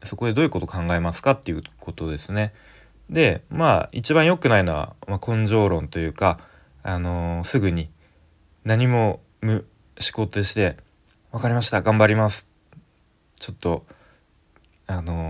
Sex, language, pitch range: male, Japanese, 85-110 Hz